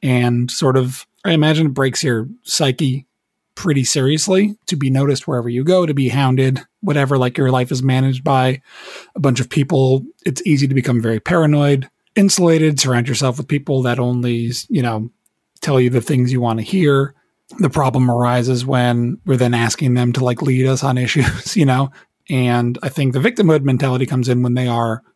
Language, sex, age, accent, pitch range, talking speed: English, male, 30-49, American, 125-150 Hz, 195 wpm